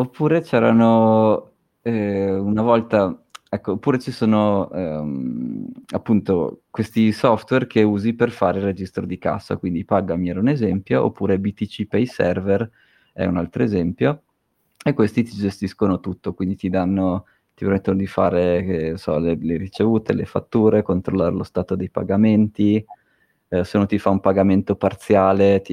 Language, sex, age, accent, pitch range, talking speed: Italian, male, 20-39, native, 95-110 Hz, 150 wpm